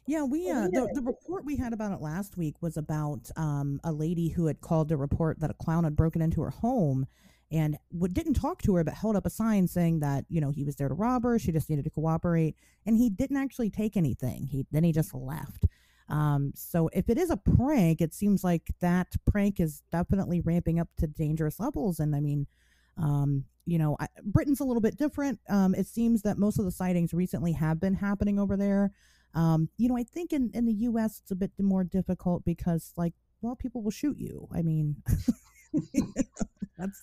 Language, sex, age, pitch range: English, female, 30-49, 155-200 Hz